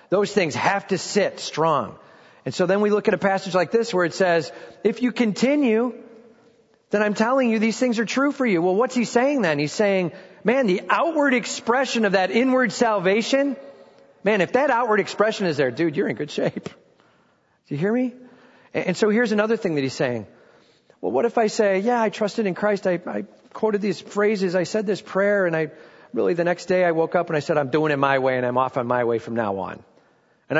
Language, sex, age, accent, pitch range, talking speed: English, male, 40-59, American, 145-225 Hz, 230 wpm